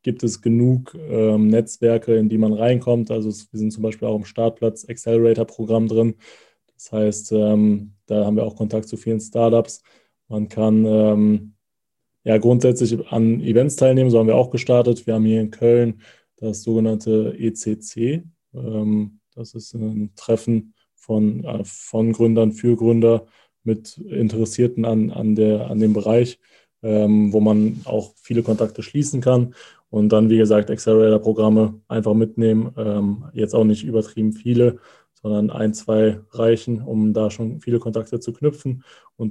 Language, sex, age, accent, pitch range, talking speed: German, male, 20-39, German, 110-115 Hz, 155 wpm